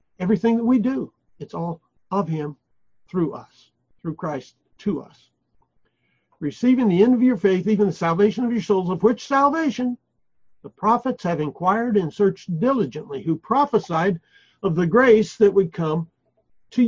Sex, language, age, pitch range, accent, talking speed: male, English, 60-79, 170-225 Hz, American, 160 wpm